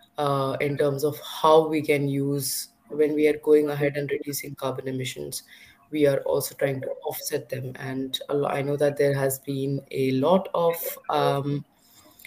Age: 20-39